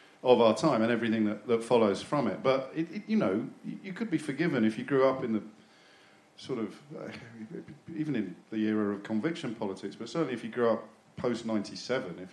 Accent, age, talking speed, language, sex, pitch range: British, 50-69, 205 wpm, English, male, 110-140 Hz